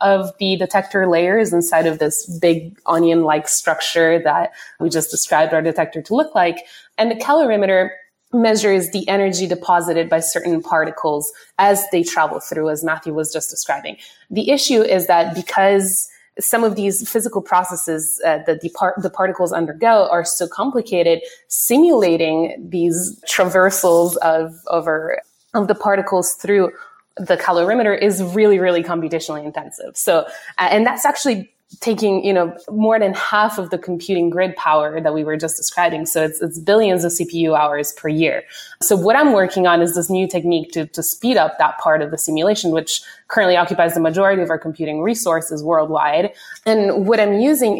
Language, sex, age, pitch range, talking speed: English, female, 20-39, 165-200 Hz, 170 wpm